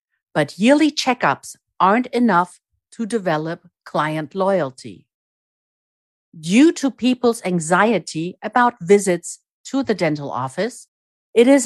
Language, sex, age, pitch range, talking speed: German, female, 50-69, 160-240 Hz, 110 wpm